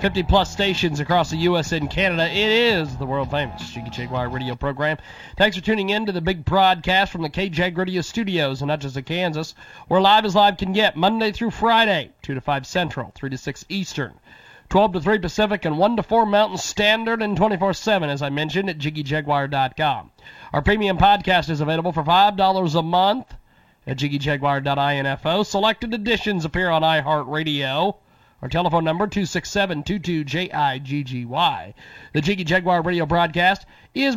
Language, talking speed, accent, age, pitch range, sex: English, 160 wpm, American, 40-59, 150-210 Hz, male